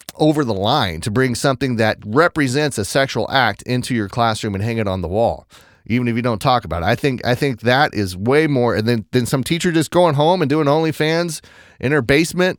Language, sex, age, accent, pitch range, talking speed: English, male, 30-49, American, 105-145 Hz, 230 wpm